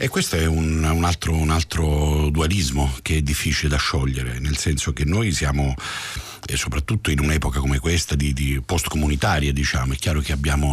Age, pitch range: 50-69, 70-95 Hz